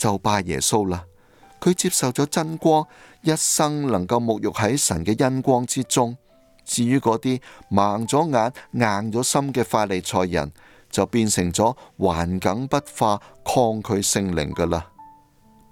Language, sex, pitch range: Chinese, male, 90-120 Hz